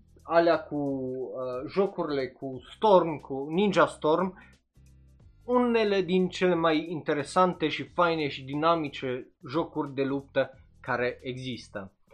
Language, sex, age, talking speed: Romanian, male, 20-39, 115 wpm